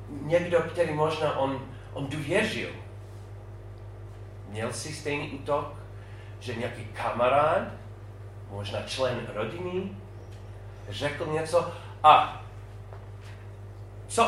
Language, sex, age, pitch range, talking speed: Czech, male, 40-59, 100-130 Hz, 85 wpm